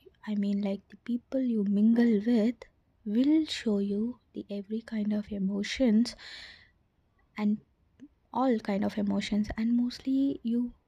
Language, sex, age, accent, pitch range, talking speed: English, female, 20-39, Indian, 210-250 Hz, 130 wpm